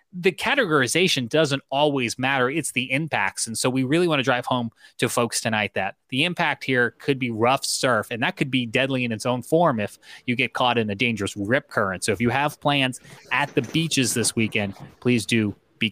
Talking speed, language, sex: 220 wpm, English, male